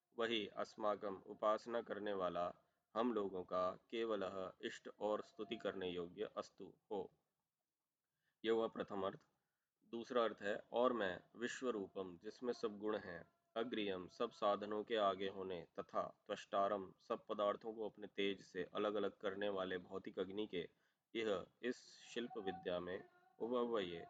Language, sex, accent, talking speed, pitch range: Hindi, male, native, 100 wpm, 100-115 Hz